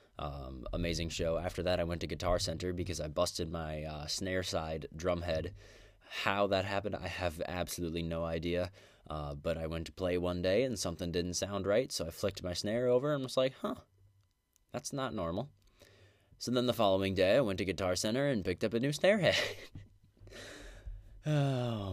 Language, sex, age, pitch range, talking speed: English, male, 20-39, 85-100 Hz, 195 wpm